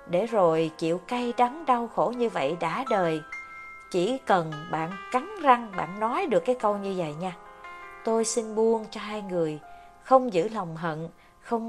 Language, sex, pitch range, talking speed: Vietnamese, female, 165-230 Hz, 180 wpm